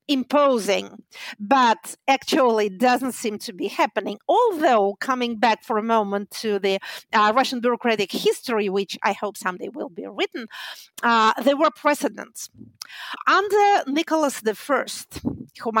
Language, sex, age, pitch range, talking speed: English, female, 50-69, 215-275 Hz, 135 wpm